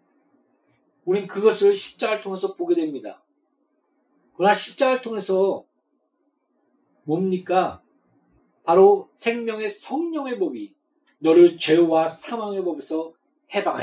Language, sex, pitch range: Korean, male, 195-310 Hz